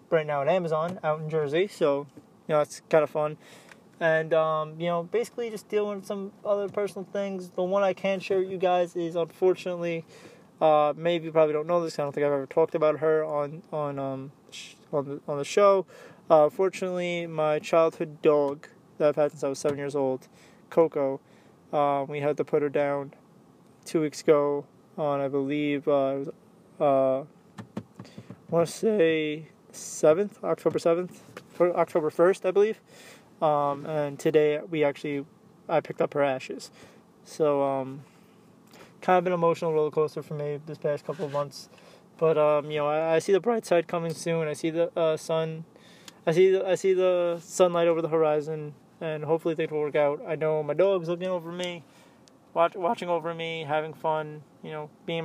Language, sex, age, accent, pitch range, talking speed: English, male, 20-39, American, 150-180 Hz, 190 wpm